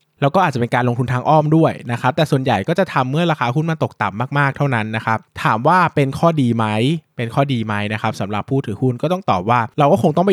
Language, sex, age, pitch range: Thai, male, 20-39, 115-150 Hz